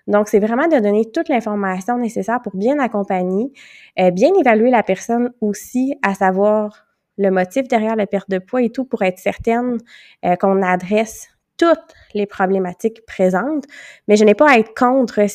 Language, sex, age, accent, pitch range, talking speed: French, female, 20-39, Canadian, 190-240 Hz, 170 wpm